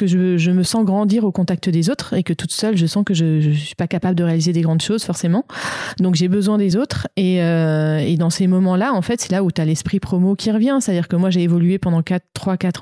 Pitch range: 165-200 Hz